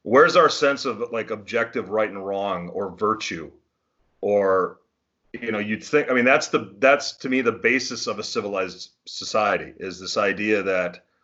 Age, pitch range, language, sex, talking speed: 40-59, 100-125 Hz, English, male, 175 wpm